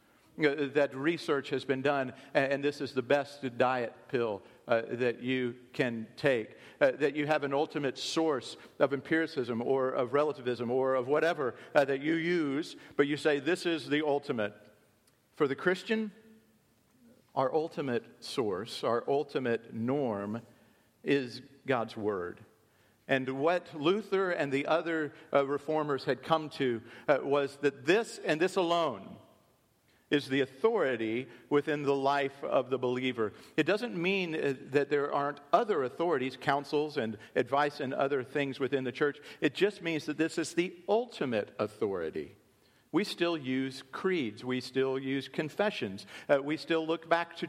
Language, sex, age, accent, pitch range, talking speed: English, male, 50-69, American, 130-165 Hz, 155 wpm